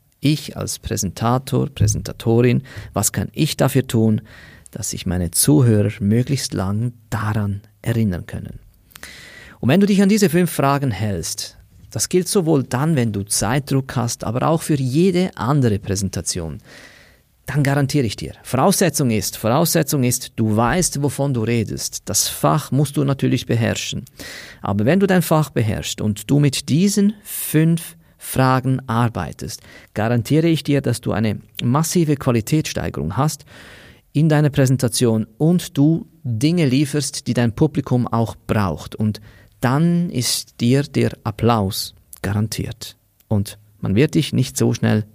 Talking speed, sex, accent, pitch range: 145 wpm, male, German, 105-145 Hz